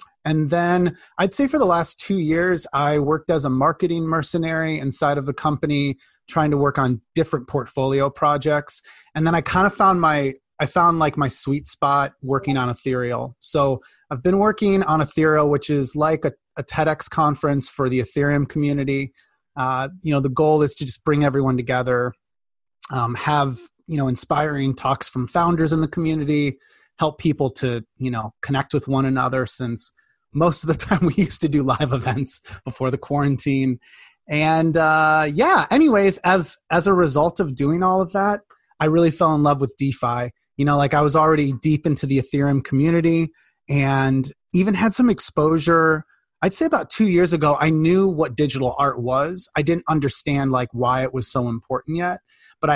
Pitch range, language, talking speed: 135-160 Hz, English, 185 wpm